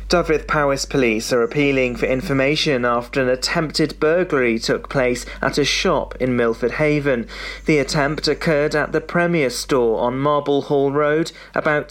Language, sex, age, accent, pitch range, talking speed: English, male, 30-49, British, 125-155 Hz, 155 wpm